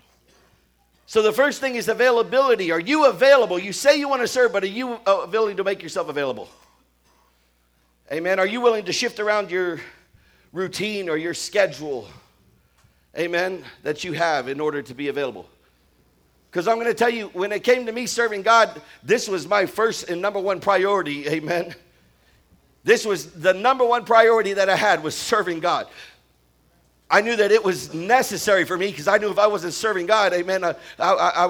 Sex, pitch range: male, 175-230 Hz